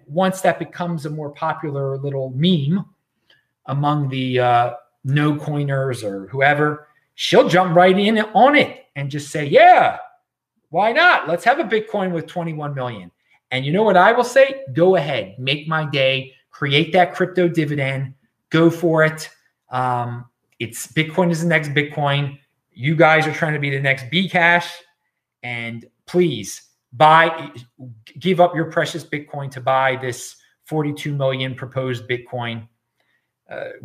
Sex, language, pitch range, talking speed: male, English, 125-170 Hz, 150 wpm